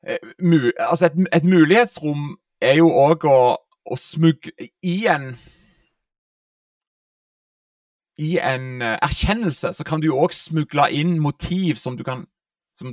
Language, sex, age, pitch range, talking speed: English, male, 30-49, 150-175 Hz, 120 wpm